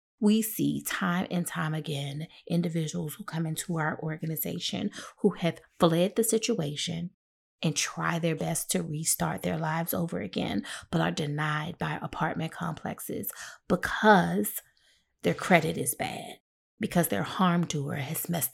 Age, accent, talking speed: 30-49, American, 140 wpm